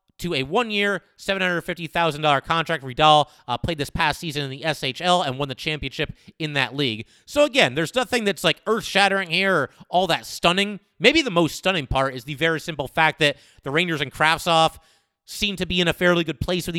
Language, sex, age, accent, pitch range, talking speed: English, male, 30-49, American, 140-180 Hz, 205 wpm